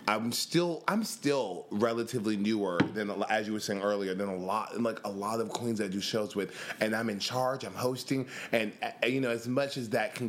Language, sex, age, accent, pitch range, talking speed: English, male, 20-39, American, 95-110 Hz, 225 wpm